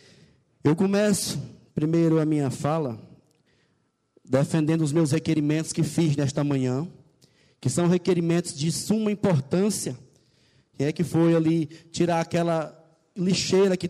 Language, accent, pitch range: English, Brazilian, 155-190 Hz